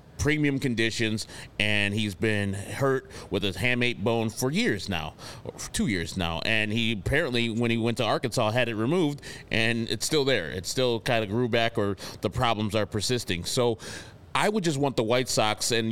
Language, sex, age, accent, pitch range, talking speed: English, male, 30-49, American, 105-130 Hz, 200 wpm